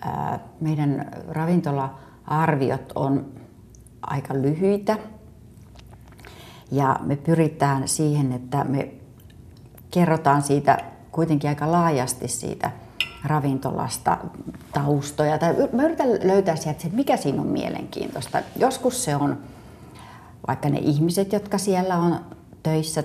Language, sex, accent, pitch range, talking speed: Finnish, female, native, 135-155 Hz, 95 wpm